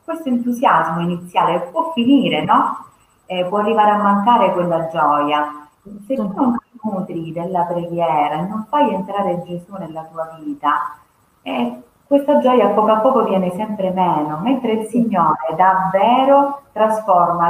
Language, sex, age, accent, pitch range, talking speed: Italian, female, 30-49, native, 170-220 Hz, 145 wpm